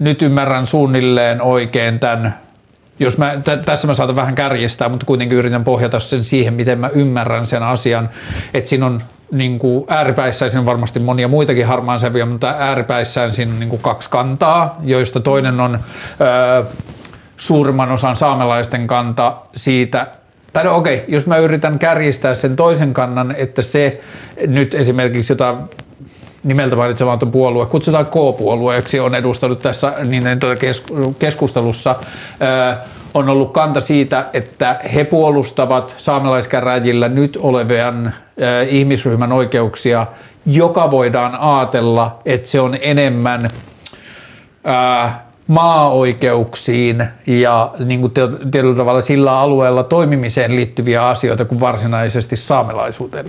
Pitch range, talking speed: 120-140 Hz, 110 wpm